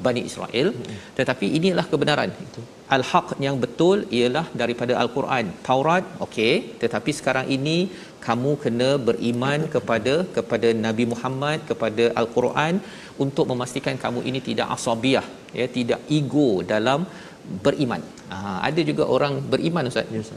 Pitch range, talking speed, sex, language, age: 120-150 Hz, 130 wpm, male, Malayalam, 40-59